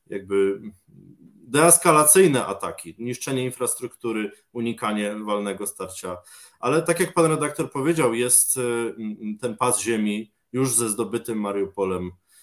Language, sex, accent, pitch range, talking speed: Polish, male, native, 100-125 Hz, 105 wpm